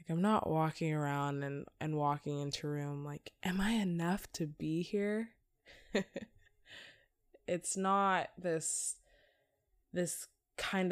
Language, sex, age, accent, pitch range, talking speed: English, female, 10-29, American, 145-180 Hz, 125 wpm